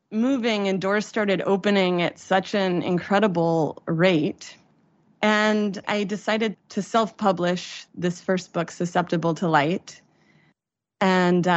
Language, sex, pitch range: English, female, 170-210 Hz